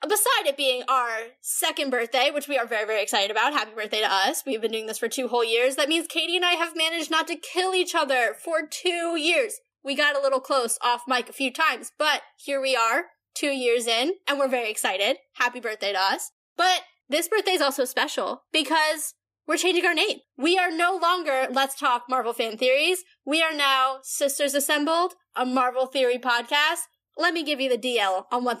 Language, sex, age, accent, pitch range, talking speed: English, female, 10-29, American, 240-310 Hz, 215 wpm